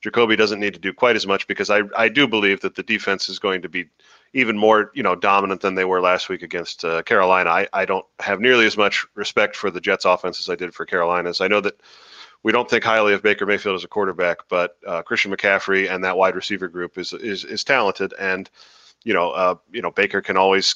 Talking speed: 250 wpm